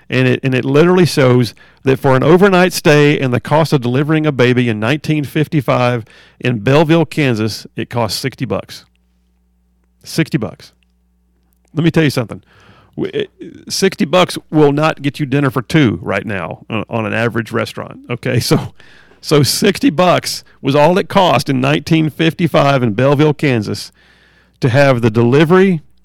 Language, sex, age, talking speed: English, male, 50-69, 155 wpm